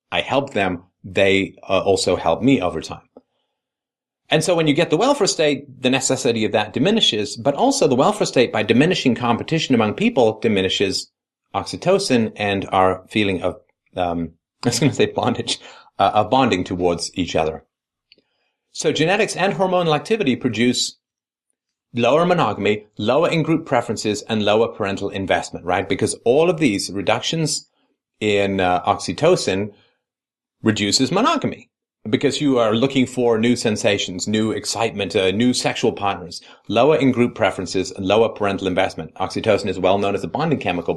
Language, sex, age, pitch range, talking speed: English, male, 30-49, 95-130 Hz, 155 wpm